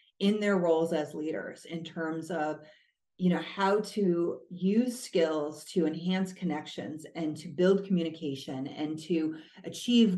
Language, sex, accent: English, female, American